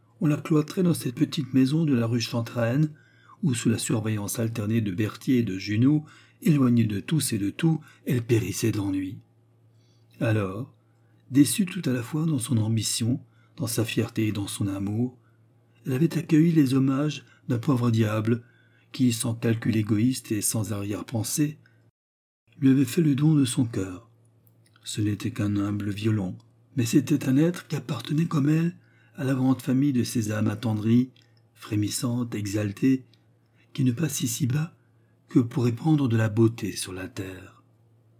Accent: French